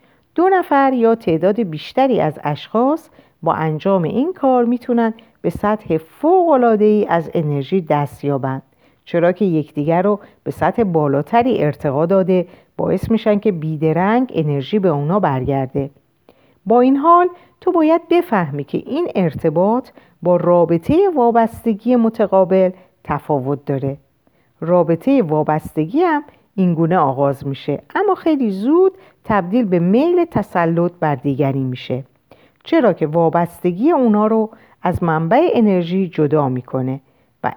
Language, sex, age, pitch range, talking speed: Persian, female, 50-69, 155-250 Hz, 125 wpm